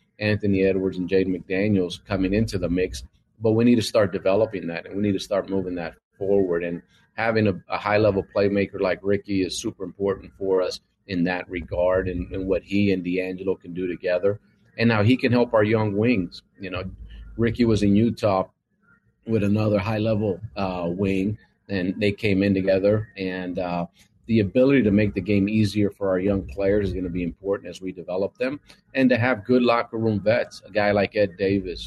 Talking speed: 205 wpm